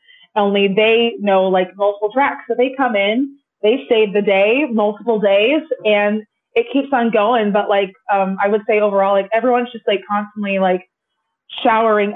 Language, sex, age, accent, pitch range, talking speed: English, female, 20-39, American, 195-225 Hz, 175 wpm